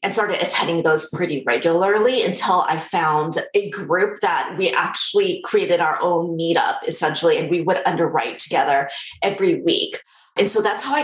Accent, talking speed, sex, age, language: American, 170 wpm, female, 30-49, English